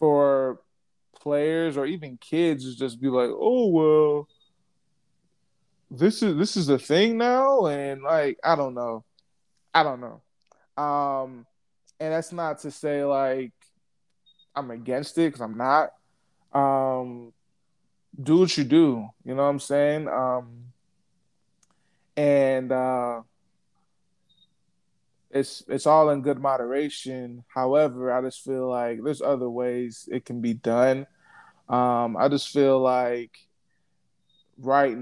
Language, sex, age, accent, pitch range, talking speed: English, male, 20-39, American, 125-155 Hz, 130 wpm